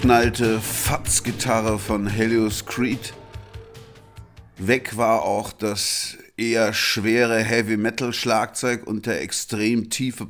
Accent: German